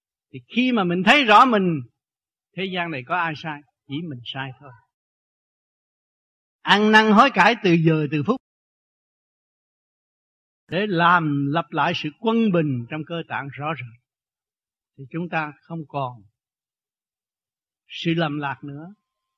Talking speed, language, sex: 140 wpm, Vietnamese, male